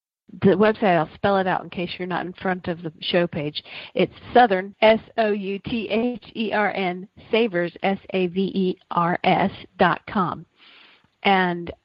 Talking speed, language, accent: 120 wpm, English, American